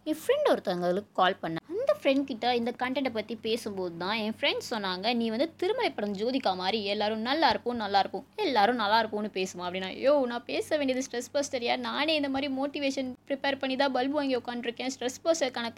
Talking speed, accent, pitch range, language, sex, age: 180 wpm, native, 210-285 Hz, Tamil, female, 20-39